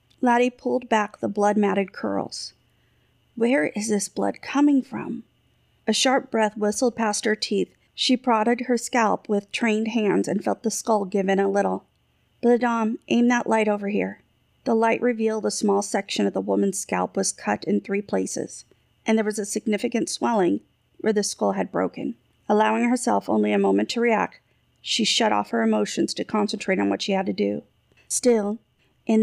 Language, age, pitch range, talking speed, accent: English, 40-59, 195-225 Hz, 180 wpm, American